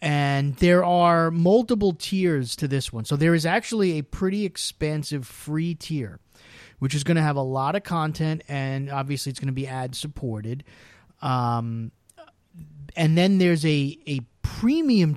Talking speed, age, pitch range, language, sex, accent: 155 wpm, 30-49, 125-165 Hz, English, male, American